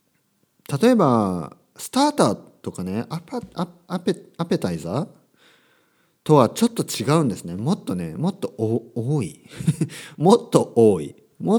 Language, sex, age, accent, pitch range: Japanese, male, 40-59, native, 105-175 Hz